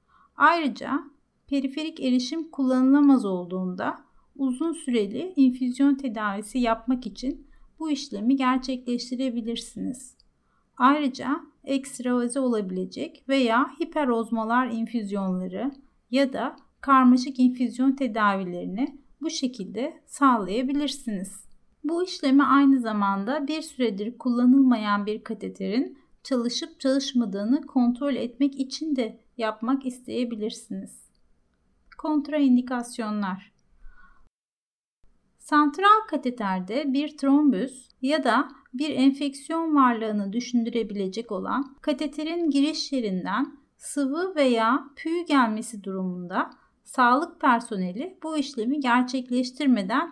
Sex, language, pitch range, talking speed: female, English, 230-285 Hz, 85 wpm